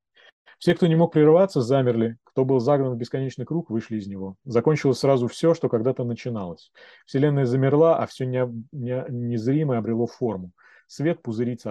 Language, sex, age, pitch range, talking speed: Russian, male, 30-49, 110-140 Hz, 155 wpm